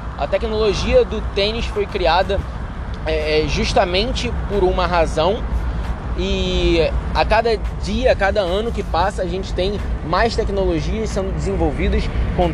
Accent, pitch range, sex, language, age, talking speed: Brazilian, 175-230 Hz, male, Portuguese, 20-39, 135 wpm